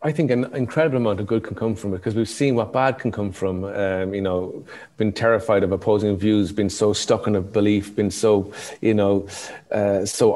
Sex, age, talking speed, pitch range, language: male, 30-49, 225 wpm, 105-130 Hz, English